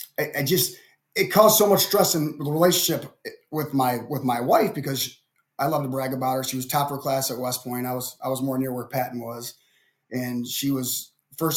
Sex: male